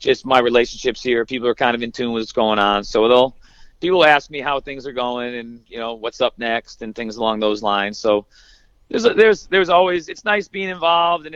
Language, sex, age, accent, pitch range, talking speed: English, male, 40-59, American, 115-135 Hz, 240 wpm